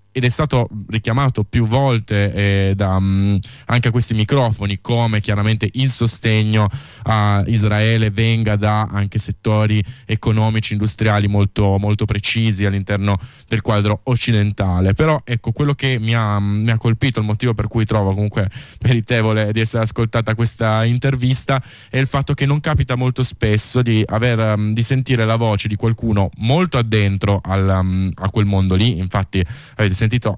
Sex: male